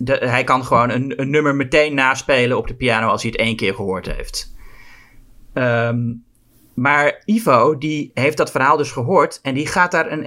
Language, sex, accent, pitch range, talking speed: Dutch, male, Dutch, 125-190 Hz, 180 wpm